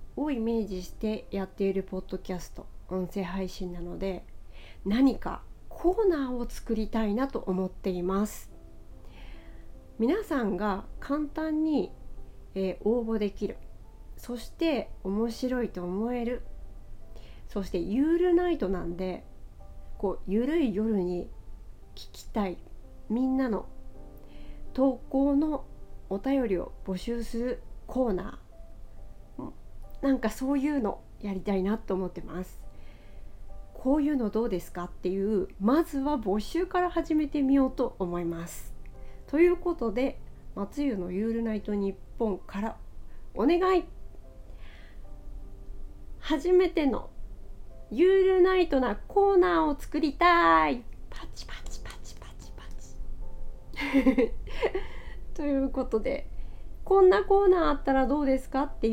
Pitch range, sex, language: 185-285 Hz, female, Japanese